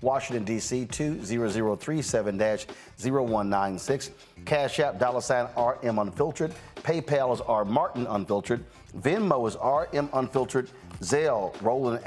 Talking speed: 100 wpm